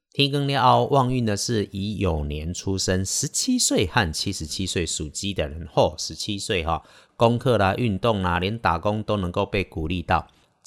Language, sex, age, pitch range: Chinese, male, 50-69, 85-115 Hz